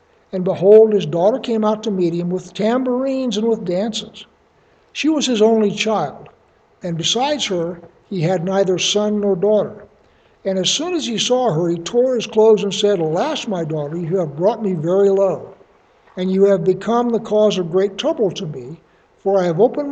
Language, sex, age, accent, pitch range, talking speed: English, male, 60-79, American, 185-230 Hz, 195 wpm